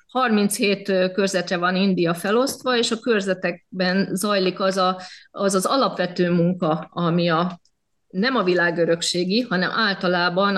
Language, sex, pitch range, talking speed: Hungarian, female, 180-225 Hz, 125 wpm